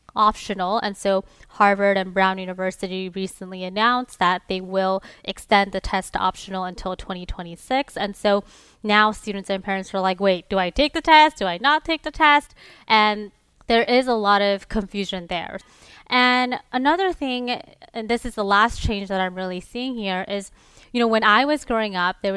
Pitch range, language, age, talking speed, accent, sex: 195-245 Hz, English, 20-39, 185 wpm, American, female